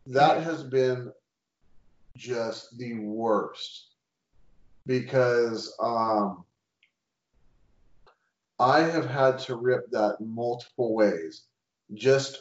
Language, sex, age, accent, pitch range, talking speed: English, male, 30-49, American, 105-130 Hz, 80 wpm